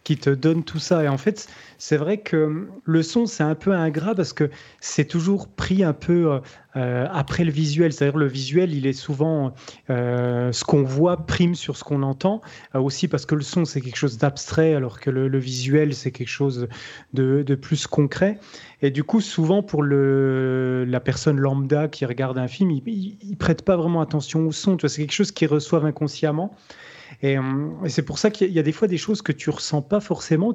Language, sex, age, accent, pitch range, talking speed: French, male, 30-49, French, 140-175 Hz, 230 wpm